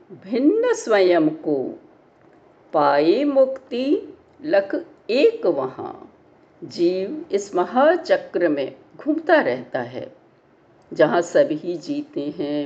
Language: Hindi